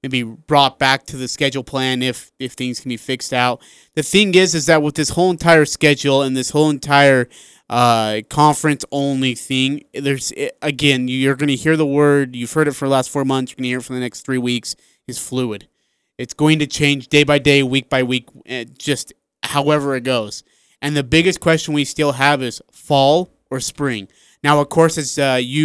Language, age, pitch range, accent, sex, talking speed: English, 30-49, 130-155 Hz, American, male, 215 wpm